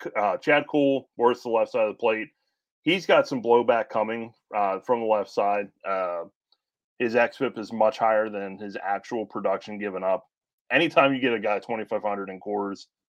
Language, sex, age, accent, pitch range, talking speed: English, male, 30-49, American, 105-140 Hz, 185 wpm